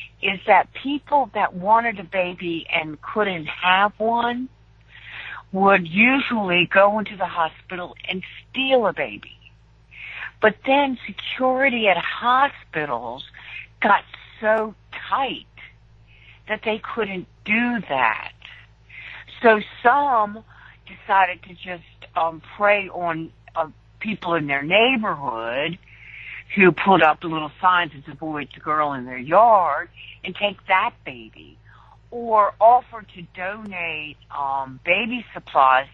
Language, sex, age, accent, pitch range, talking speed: English, female, 60-79, American, 140-215 Hz, 120 wpm